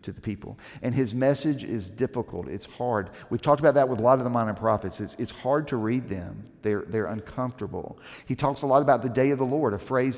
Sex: male